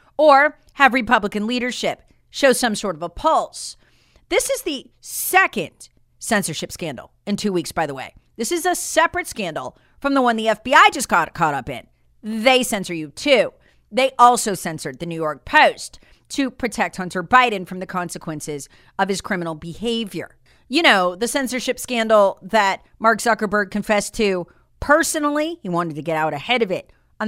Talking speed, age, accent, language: 175 wpm, 40-59, American, English